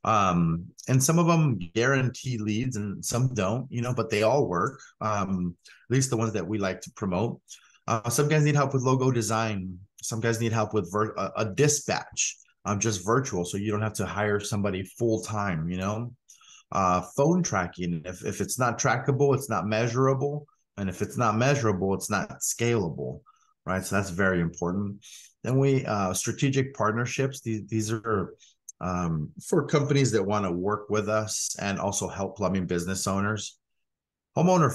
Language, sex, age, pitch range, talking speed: English, male, 30-49, 95-120 Hz, 180 wpm